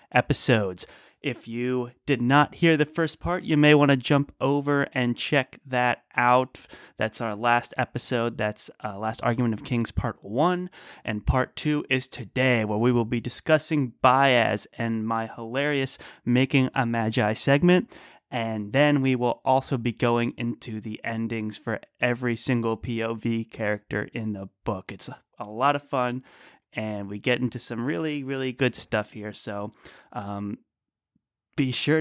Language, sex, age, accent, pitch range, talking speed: English, male, 30-49, American, 115-140 Hz, 160 wpm